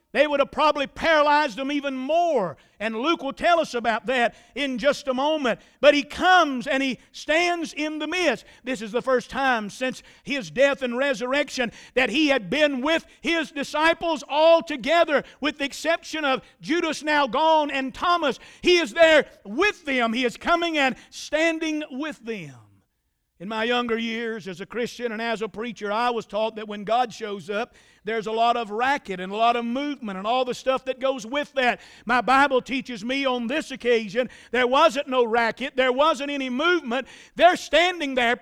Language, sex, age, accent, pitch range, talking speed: English, male, 50-69, American, 235-300 Hz, 190 wpm